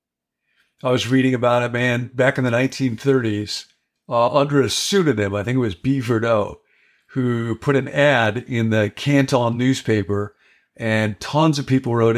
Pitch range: 110-130 Hz